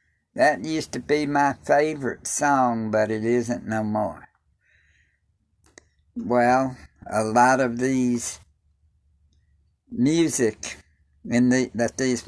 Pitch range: 75-125 Hz